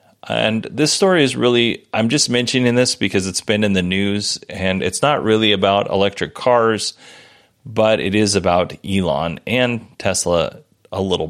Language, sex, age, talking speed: English, male, 30-49, 165 wpm